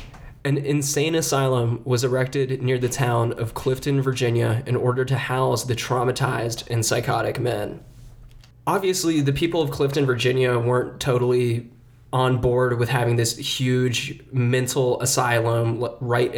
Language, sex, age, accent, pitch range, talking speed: English, male, 20-39, American, 120-135 Hz, 135 wpm